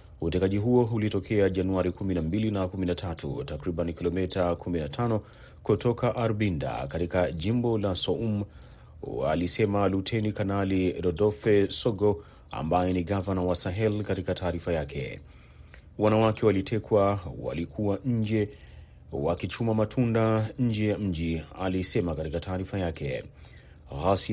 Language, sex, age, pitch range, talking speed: Swahili, male, 30-49, 85-110 Hz, 105 wpm